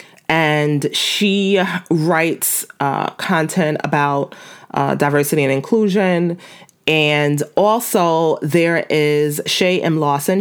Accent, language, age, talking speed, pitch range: American, English, 30-49, 100 wpm, 140-170 Hz